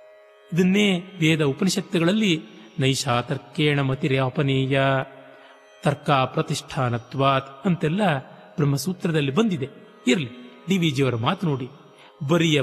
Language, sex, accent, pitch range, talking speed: Kannada, male, native, 145-215 Hz, 80 wpm